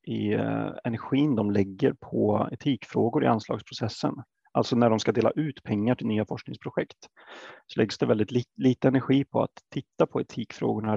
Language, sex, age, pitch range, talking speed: Swedish, male, 30-49, 110-135 Hz, 160 wpm